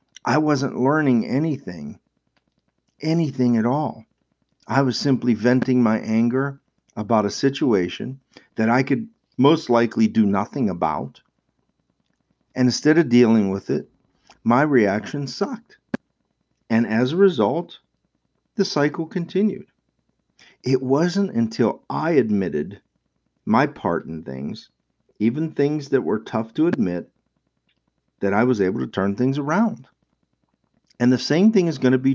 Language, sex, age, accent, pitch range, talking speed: English, male, 50-69, American, 110-145 Hz, 135 wpm